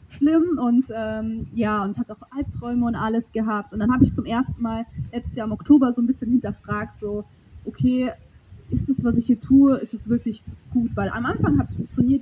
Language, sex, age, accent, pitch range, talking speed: German, female, 20-39, German, 210-250 Hz, 210 wpm